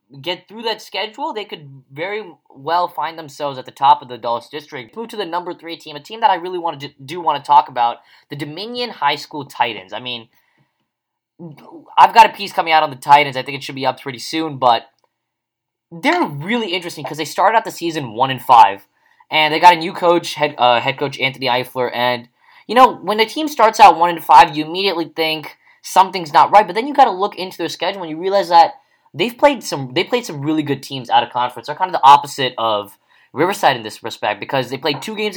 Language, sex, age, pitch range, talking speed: English, male, 10-29, 125-175 Hz, 240 wpm